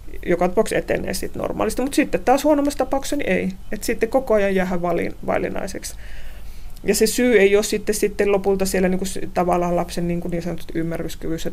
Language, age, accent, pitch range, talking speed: Finnish, 30-49, native, 175-210 Hz, 175 wpm